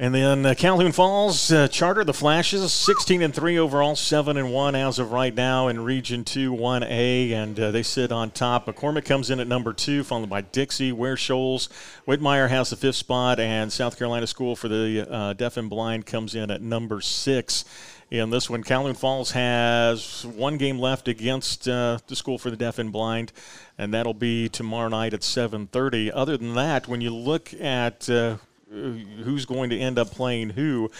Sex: male